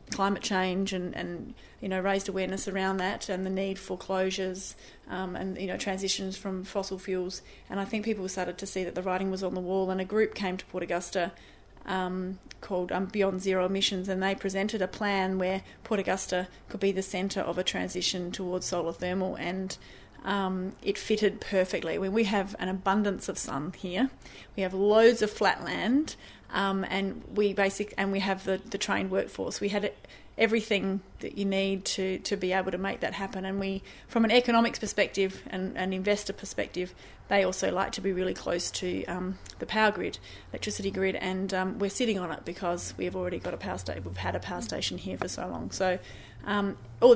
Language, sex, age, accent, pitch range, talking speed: English, female, 30-49, Australian, 185-200 Hz, 205 wpm